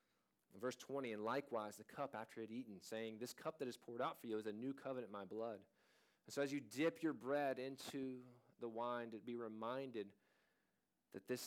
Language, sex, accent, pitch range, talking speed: English, male, American, 110-140 Hz, 215 wpm